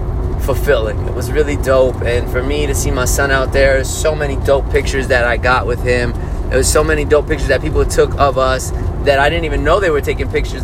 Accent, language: American, English